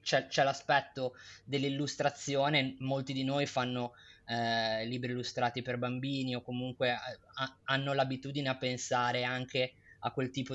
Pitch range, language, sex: 125-140 Hz, Italian, male